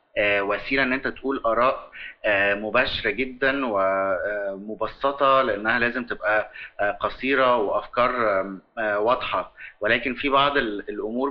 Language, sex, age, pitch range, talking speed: Arabic, male, 30-49, 105-130 Hz, 95 wpm